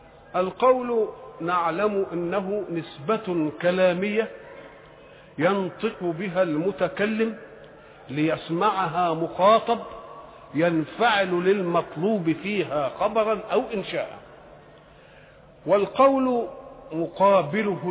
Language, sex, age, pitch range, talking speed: English, male, 50-69, 170-220 Hz, 60 wpm